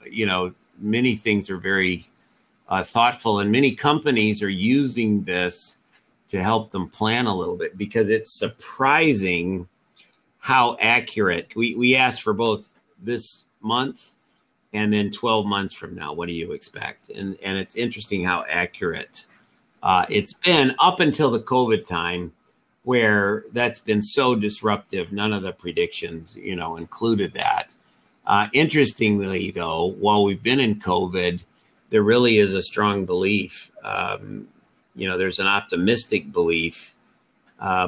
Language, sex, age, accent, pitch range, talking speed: English, male, 50-69, American, 95-120 Hz, 145 wpm